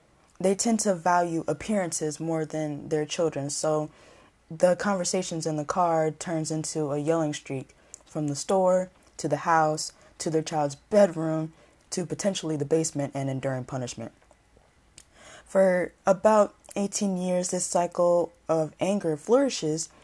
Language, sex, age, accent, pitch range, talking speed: English, female, 20-39, American, 150-185 Hz, 140 wpm